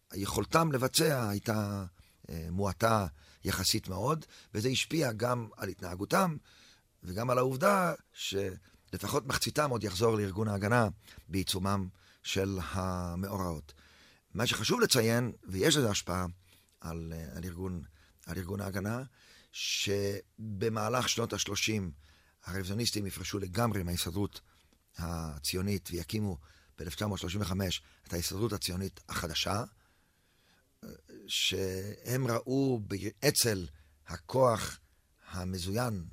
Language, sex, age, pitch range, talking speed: Hebrew, male, 40-59, 90-115 Hz, 90 wpm